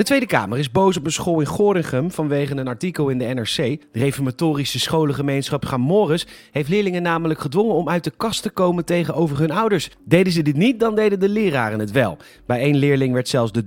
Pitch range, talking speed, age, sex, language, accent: 125-175 Hz, 215 wpm, 30-49, male, Dutch, Dutch